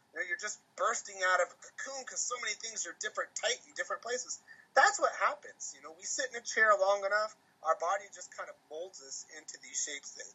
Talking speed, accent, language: 230 wpm, American, English